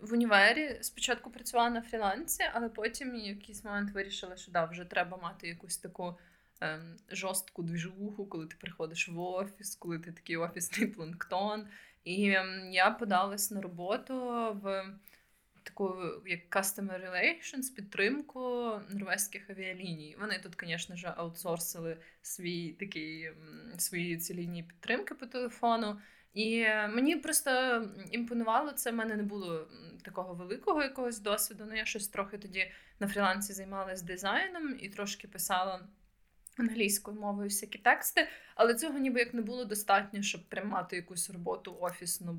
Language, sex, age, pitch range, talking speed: Ukrainian, female, 20-39, 180-220 Hz, 135 wpm